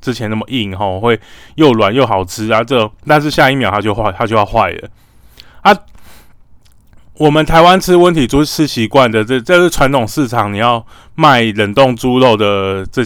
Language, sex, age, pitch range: Chinese, male, 20-39, 110-140 Hz